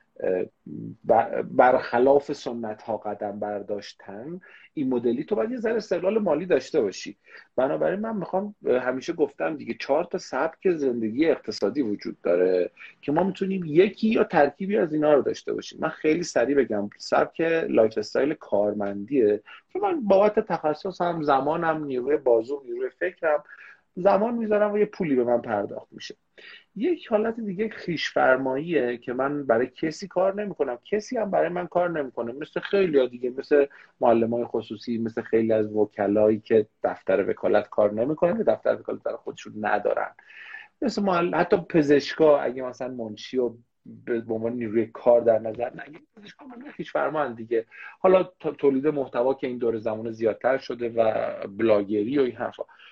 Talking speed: 150 wpm